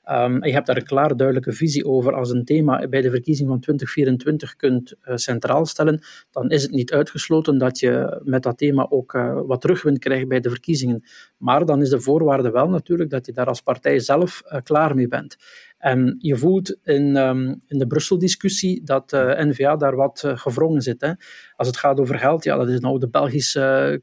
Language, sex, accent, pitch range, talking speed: Dutch, male, Dutch, 130-155 Hz, 205 wpm